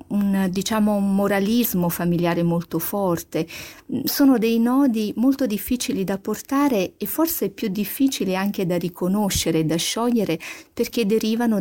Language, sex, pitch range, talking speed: Italian, female, 170-215 Hz, 130 wpm